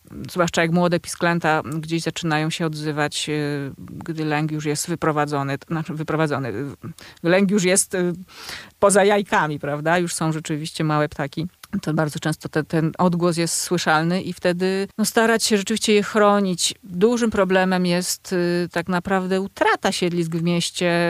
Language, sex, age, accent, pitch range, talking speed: Polish, female, 30-49, native, 160-180 Hz, 135 wpm